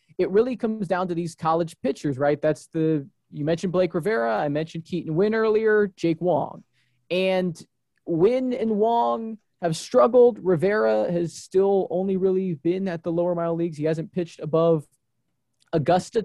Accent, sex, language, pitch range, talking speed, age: American, male, English, 150-185 Hz, 165 wpm, 20-39